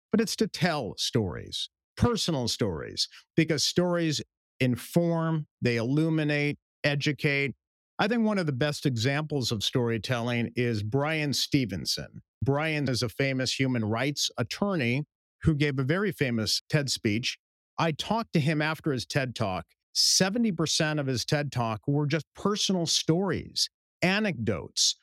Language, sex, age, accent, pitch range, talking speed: English, male, 50-69, American, 125-165 Hz, 140 wpm